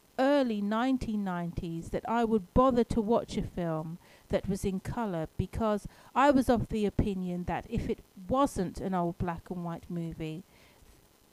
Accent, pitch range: British, 175-230 Hz